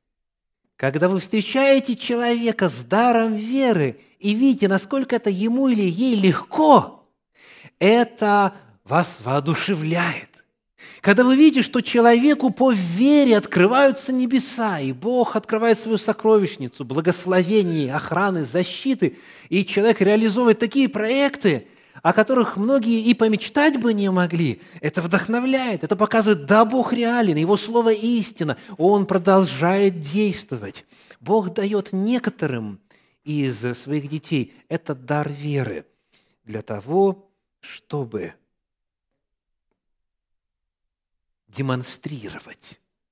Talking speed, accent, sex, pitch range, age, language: 105 wpm, native, male, 145-235 Hz, 30-49, Russian